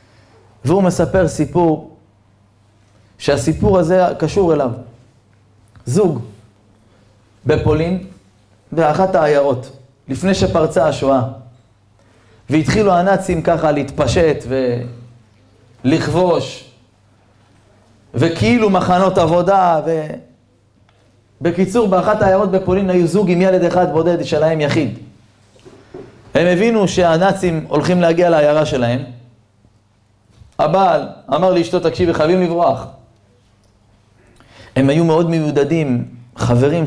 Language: Hebrew